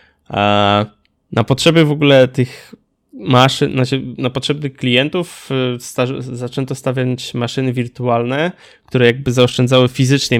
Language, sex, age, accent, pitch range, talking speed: Polish, male, 20-39, native, 115-135 Hz, 110 wpm